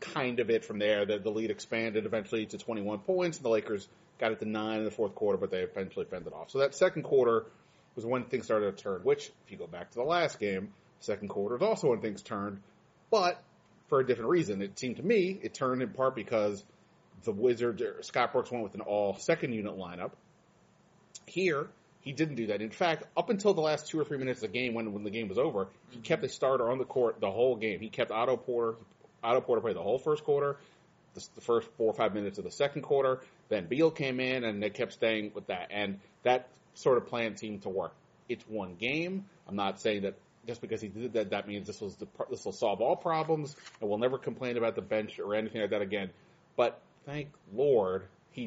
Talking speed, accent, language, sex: 235 wpm, American, English, male